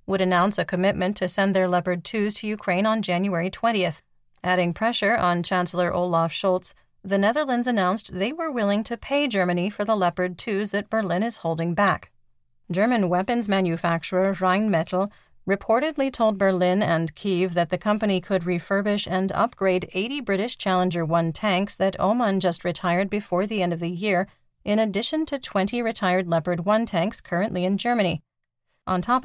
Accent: American